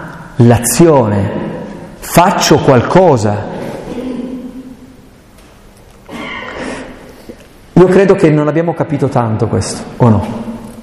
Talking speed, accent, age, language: 70 wpm, native, 40-59, Italian